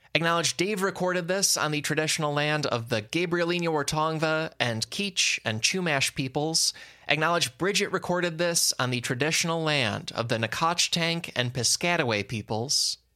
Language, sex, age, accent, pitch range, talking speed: English, male, 20-39, American, 120-170 Hz, 140 wpm